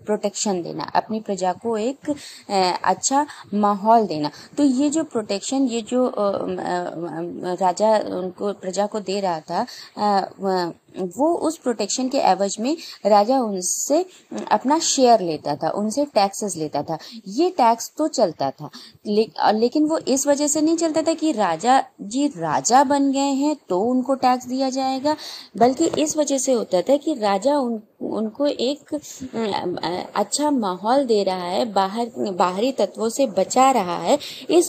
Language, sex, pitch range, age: Hindi, female, 190-270 Hz, 20-39